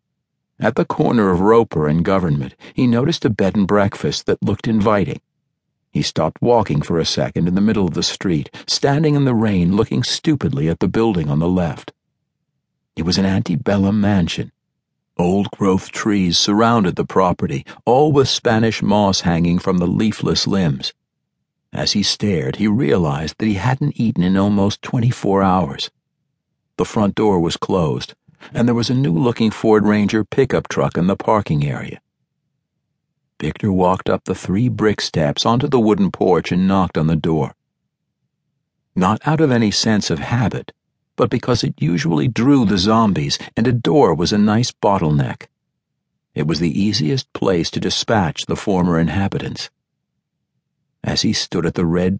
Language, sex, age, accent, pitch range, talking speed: English, male, 60-79, American, 90-115 Hz, 165 wpm